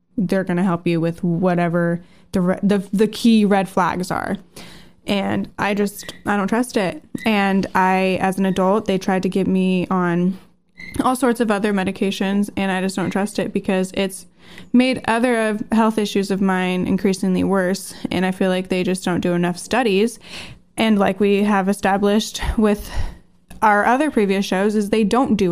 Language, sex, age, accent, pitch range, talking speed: English, female, 10-29, American, 185-220 Hz, 180 wpm